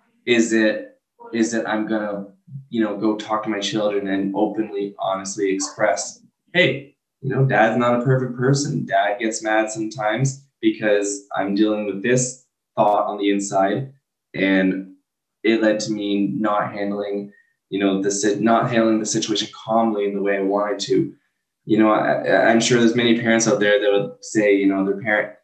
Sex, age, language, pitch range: male, 10-29, English, 100-115 Hz